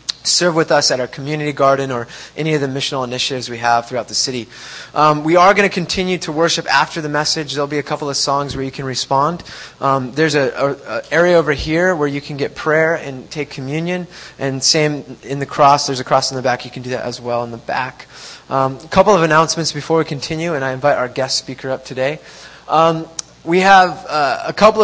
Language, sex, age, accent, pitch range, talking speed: English, male, 20-39, American, 140-165 Hz, 230 wpm